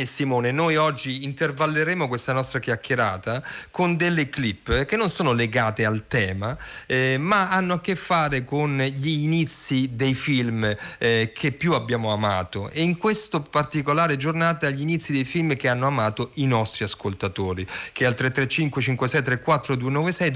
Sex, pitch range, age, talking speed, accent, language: male, 115-155 Hz, 40-59, 145 wpm, native, Italian